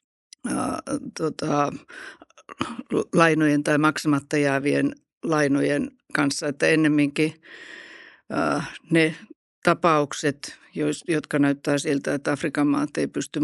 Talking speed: 75 wpm